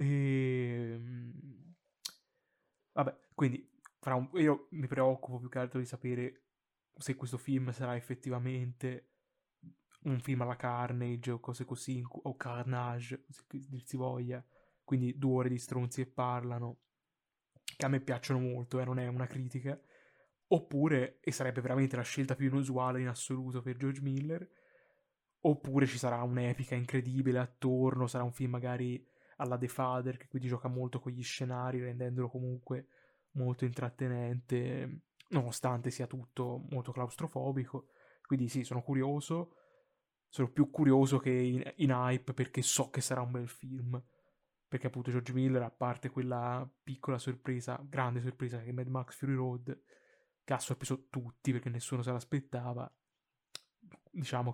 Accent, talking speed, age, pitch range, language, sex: native, 145 wpm, 20-39, 125-135 Hz, Italian, male